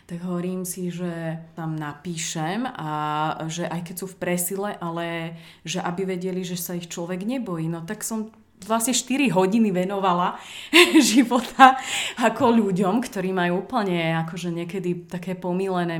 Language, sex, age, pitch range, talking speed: Slovak, female, 30-49, 170-195 Hz, 145 wpm